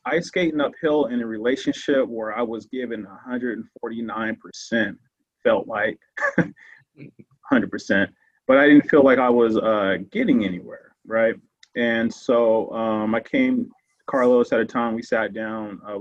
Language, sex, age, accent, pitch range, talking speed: English, male, 30-49, American, 110-125 Hz, 140 wpm